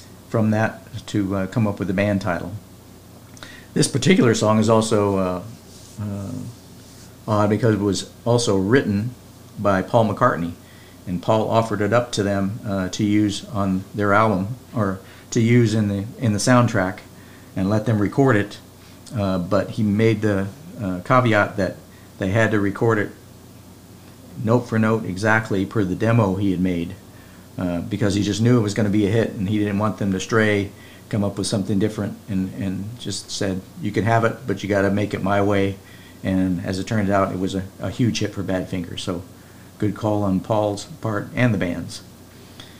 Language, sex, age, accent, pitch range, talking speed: English, male, 50-69, American, 95-115 Hz, 190 wpm